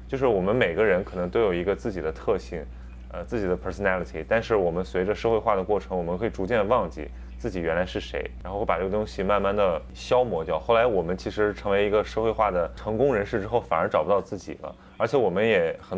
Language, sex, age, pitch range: Chinese, male, 20-39, 85-110 Hz